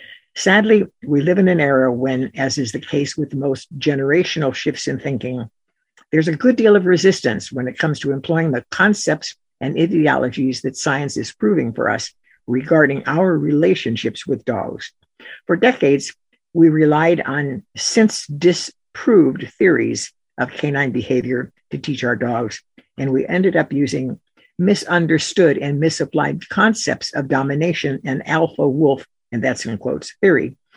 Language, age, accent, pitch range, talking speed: English, 60-79, American, 135-170 Hz, 145 wpm